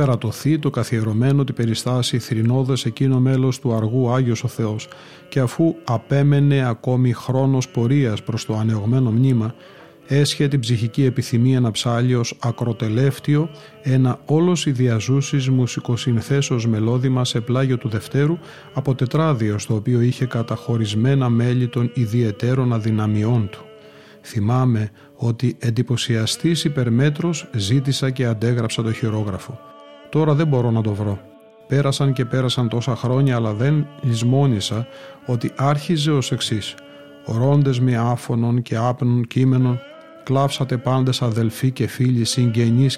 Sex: male